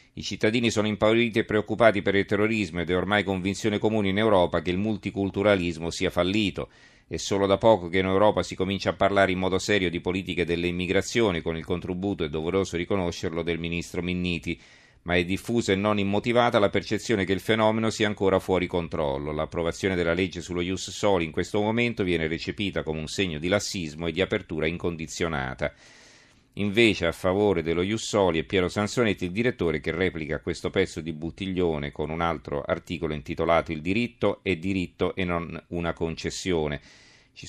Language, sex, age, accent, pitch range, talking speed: Italian, male, 40-59, native, 85-100 Hz, 180 wpm